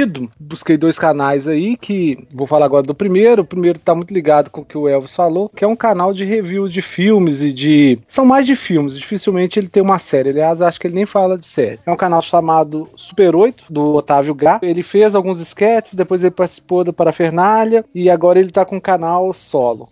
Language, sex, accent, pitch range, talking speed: Portuguese, male, Brazilian, 165-210 Hz, 230 wpm